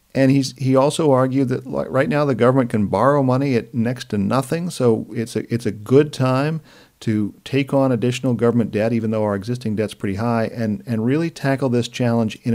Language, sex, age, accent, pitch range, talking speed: English, male, 50-69, American, 110-135 Hz, 210 wpm